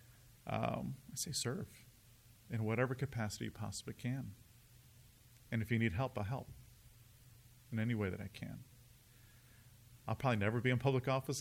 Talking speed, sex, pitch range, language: 160 wpm, male, 105-125 Hz, English